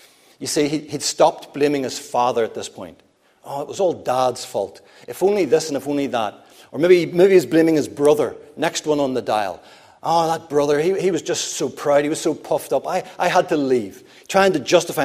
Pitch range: 135-185 Hz